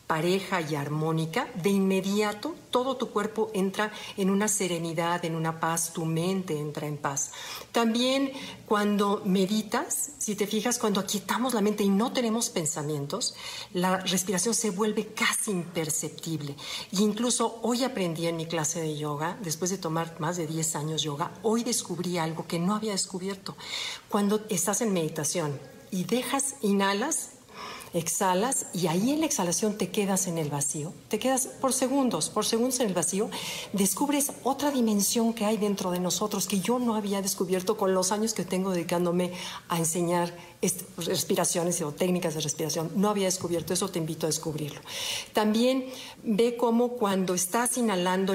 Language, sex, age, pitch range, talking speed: Spanish, female, 50-69, 170-220 Hz, 165 wpm